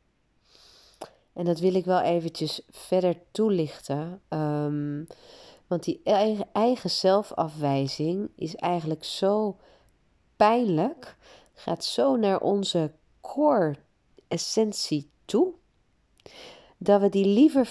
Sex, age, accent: female, 40-59, Dutch